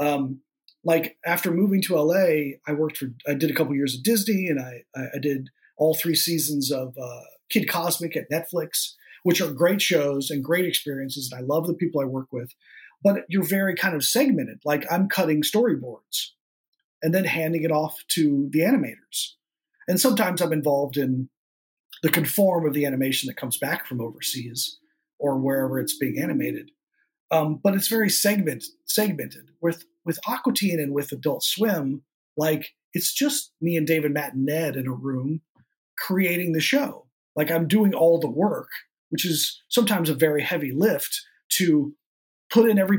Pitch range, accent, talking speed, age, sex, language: 140-185 Hz, American, 180 wpm, 40-59, male, English